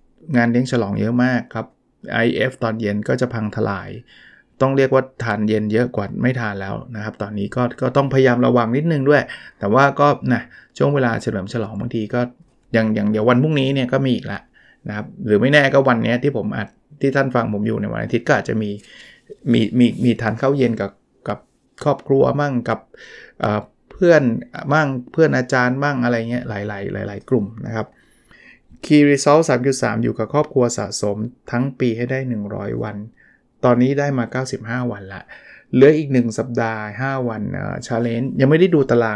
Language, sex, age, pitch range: Thai, male, 20-39, 110-130 Hz